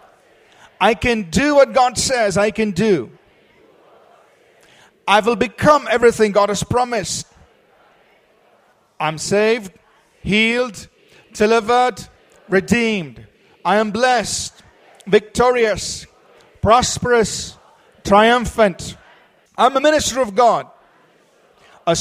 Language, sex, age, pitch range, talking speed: English, male, 40-59, 170-230 Hz, 90 wpm